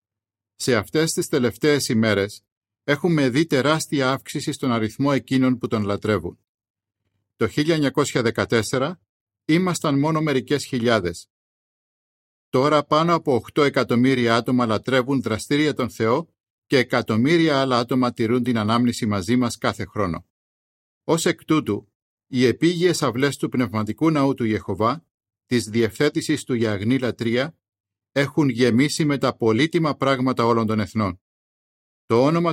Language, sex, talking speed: Greek, male, 125 wpm